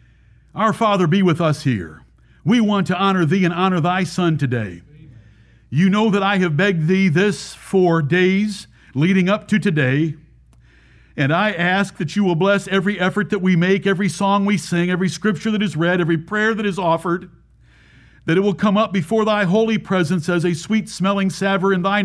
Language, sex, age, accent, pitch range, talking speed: English, male, 50-69, American, 155-200 Hz, 195 wpm